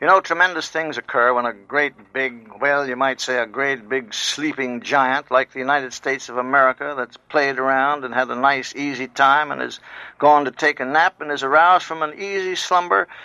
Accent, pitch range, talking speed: American, 130-160 Hz, 215 wpm